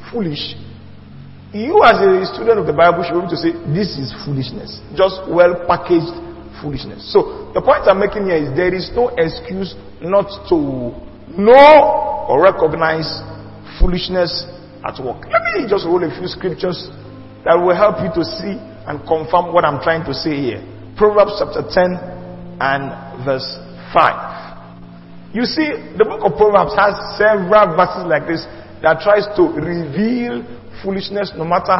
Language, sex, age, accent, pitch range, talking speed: English, male, 40-59, Nigerian, 145-200 Hz, 155 wpm